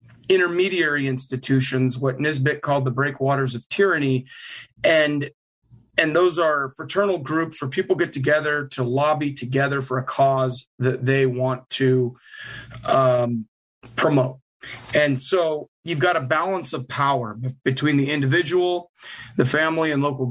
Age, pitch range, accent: 30-49, 130-150 Hz, American